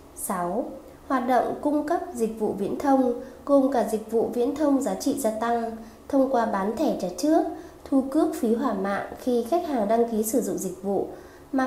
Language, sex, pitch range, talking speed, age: Vietnamese, female, 220-275 Hz, 205 wpm, 20-39